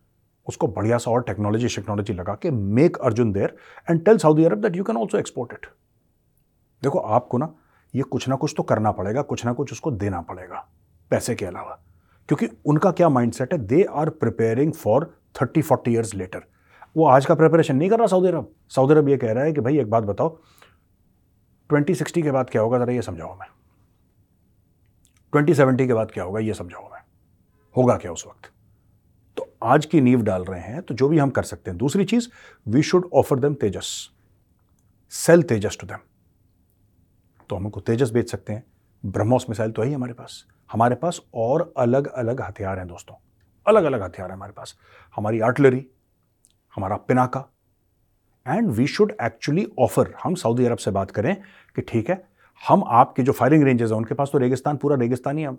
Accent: native